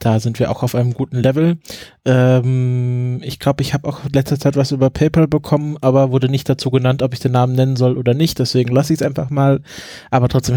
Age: 20-39